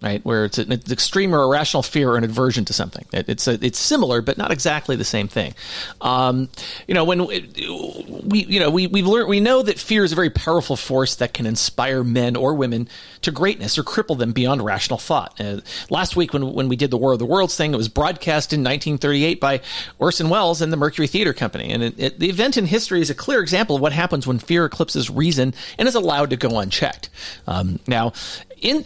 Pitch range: 125-180 Hz